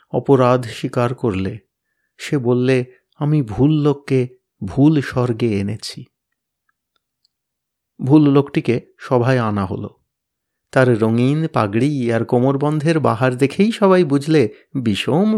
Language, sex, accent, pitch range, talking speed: Bengali, male, native, 115-145 Hz, 100 wpm